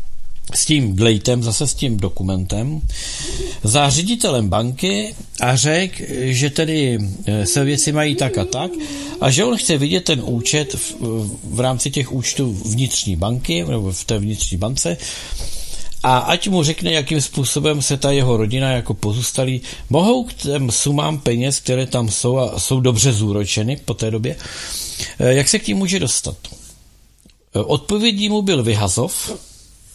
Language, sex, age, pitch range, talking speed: Czech, male, 50-69, 115-150 Hz, 155 wpm